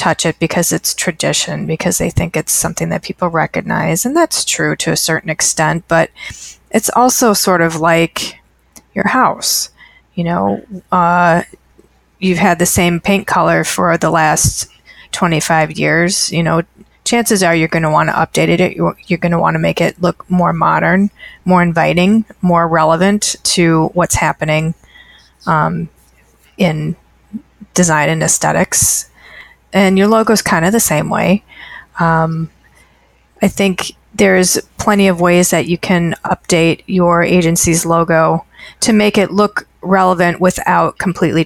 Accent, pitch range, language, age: American, 160-185 Hz, English, 30-49